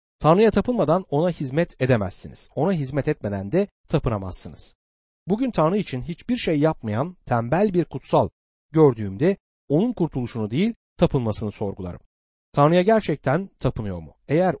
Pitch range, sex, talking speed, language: 110-170 Hz, male, 125 wpm, Turkish